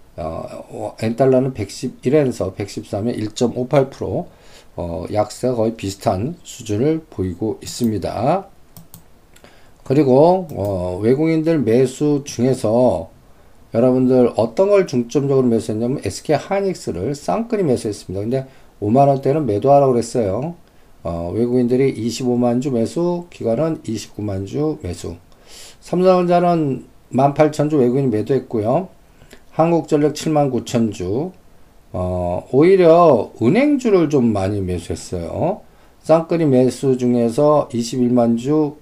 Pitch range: 105-150 Hz